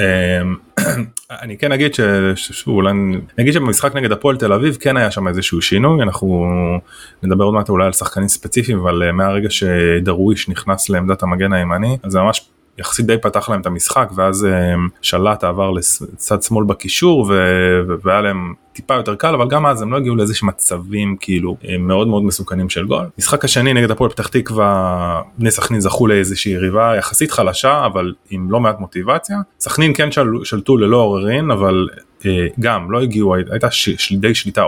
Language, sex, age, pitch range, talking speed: Hebrew, male, 20-39, 95-115 Hz, 165 wpm